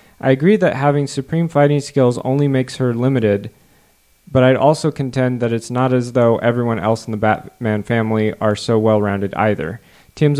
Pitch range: 110-135 Hz